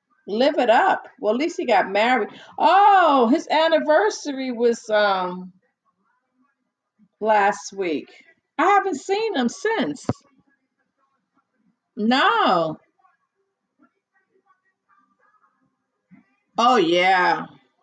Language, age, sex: English, 40-59, female